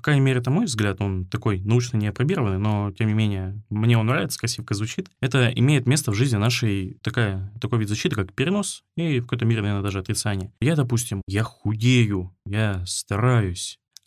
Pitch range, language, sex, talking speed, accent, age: 105-130 Hz, Russian, male, 190 wpm, native, 20-39